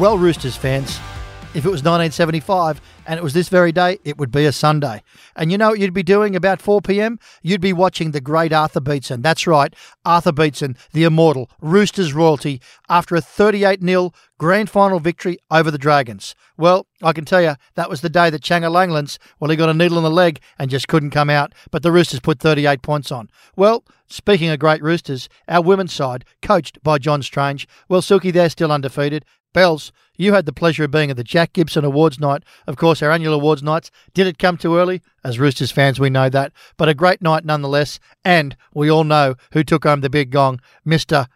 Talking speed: 215 wpm